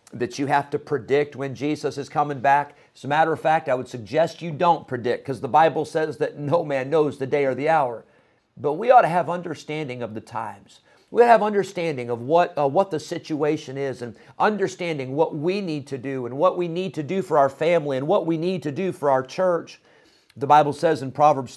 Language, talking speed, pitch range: English, 235 wpm, 130-165 Hz